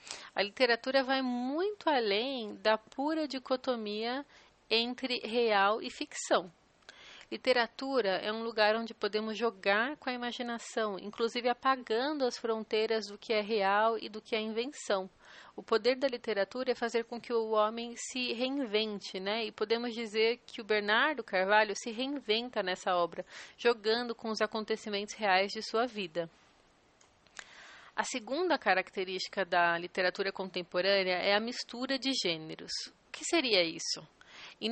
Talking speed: 145 wpm